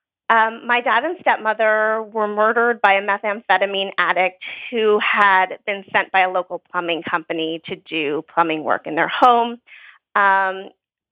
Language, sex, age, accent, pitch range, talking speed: English, female, 30-49, American, 190-235 Hz, 150 wpm